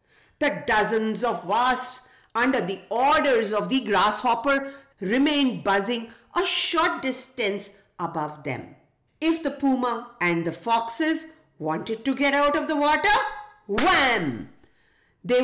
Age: 50-69